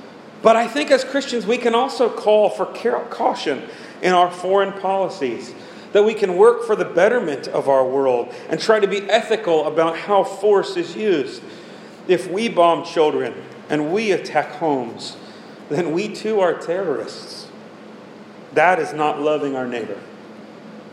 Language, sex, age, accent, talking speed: English, male, 40-59, American, 160 wpm